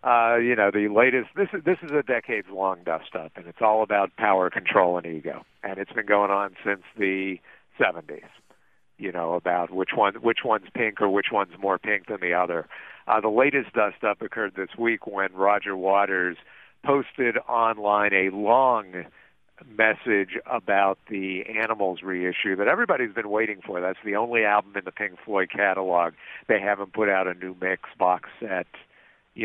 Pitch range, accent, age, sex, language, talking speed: 95-110 Hz, American, 50-69, male, English, 175 wpm